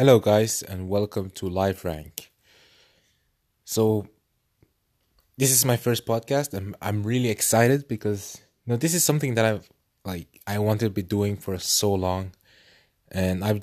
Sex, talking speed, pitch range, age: male, 155 wpm, 95-115 Hz, 20-39